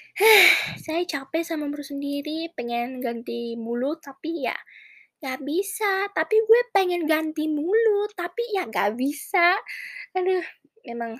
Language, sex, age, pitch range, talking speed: Indonesian, female, 20-39, 240-325 Hz, 130 wpm